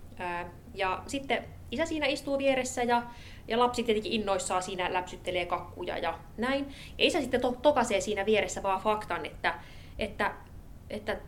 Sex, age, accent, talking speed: female, 20-39, native, 145 wpm